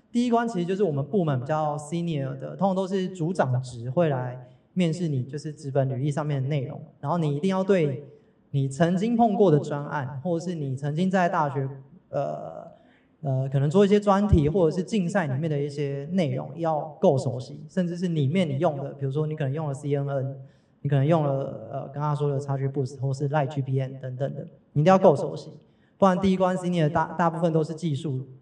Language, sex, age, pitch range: Chinese, male, 20-39, 140-180 Hz